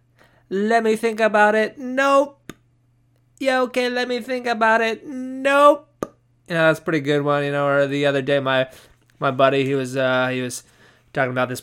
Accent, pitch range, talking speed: American, 140-210 Hz, 190 wpm